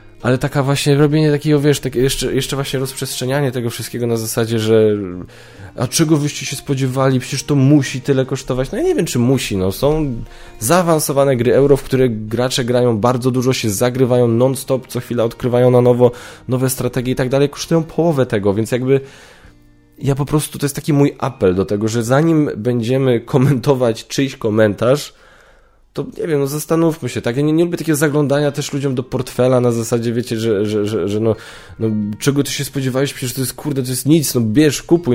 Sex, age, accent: male, 10-29, native